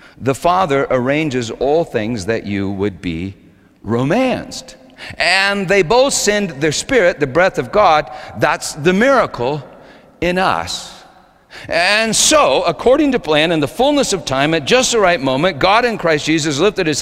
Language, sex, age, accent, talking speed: English, male, 50-69, American, 160 wpm